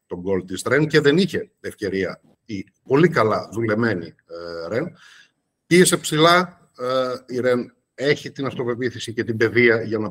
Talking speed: 160 wpm